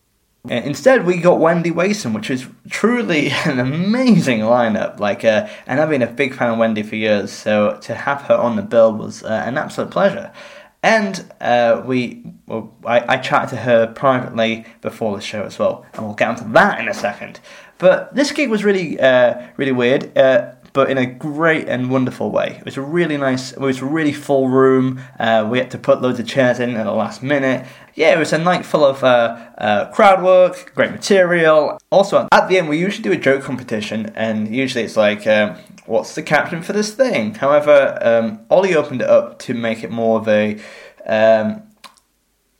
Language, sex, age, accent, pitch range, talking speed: English, male, 20-39, British, 115-185 Hz, 205 wpm